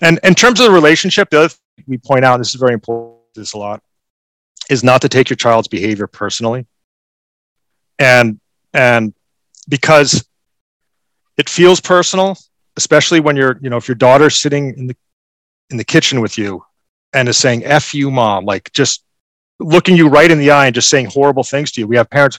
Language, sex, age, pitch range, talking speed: English, male, 40-59, 115-145 Hz, 200 wpm